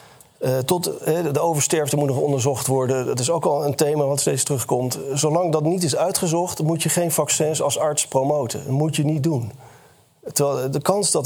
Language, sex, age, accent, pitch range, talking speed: Dutch, male, 40-59, Dutch, 135-165 Hz, 210 wpm